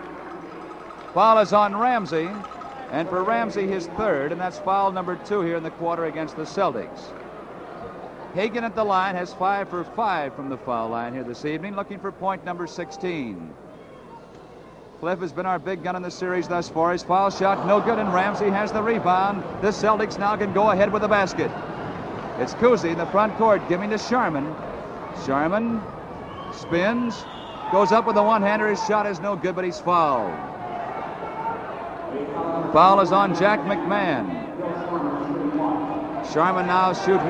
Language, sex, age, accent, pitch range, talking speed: English, male, 50-69, American, 180-220 Hz, 165 wpm